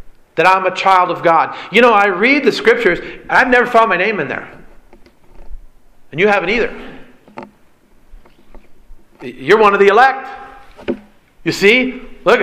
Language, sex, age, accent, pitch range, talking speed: English, male, 50-69, American, 190-260 Hz, 155 wpm